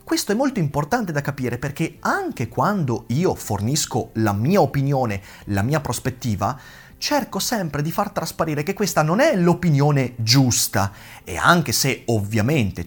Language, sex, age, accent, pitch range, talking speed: Italian, male, 30-49, native, 115-170 Hz, 150 wpm